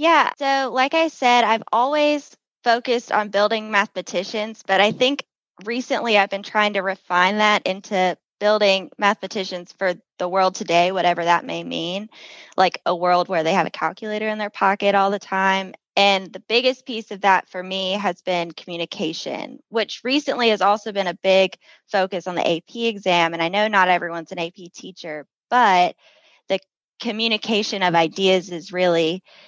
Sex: female